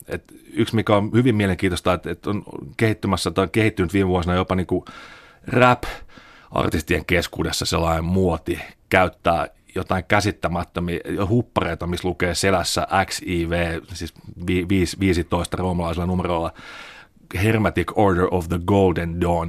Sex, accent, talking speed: male, native, 125 wpm